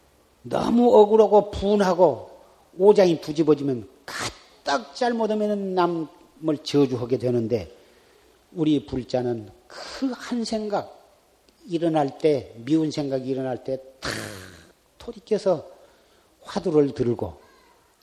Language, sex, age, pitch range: Korean, male, 40-59, 125-180 Hz